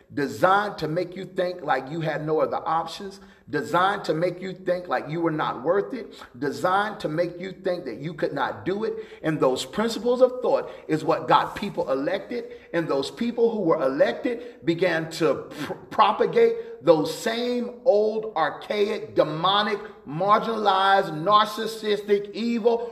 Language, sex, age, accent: English, male, 40-59, American